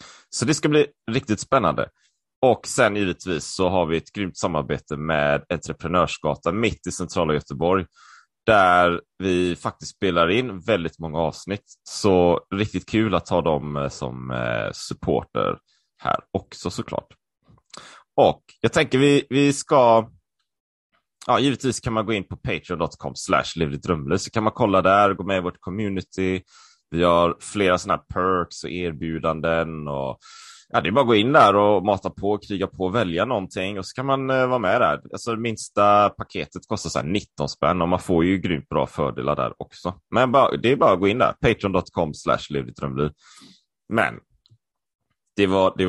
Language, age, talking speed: Swedish, 30-49, 170 wpm